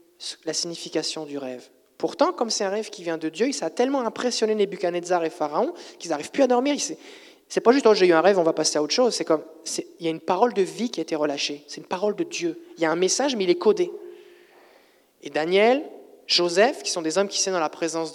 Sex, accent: male, French